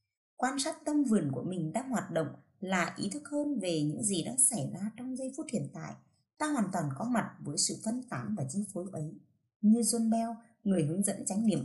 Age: 20-39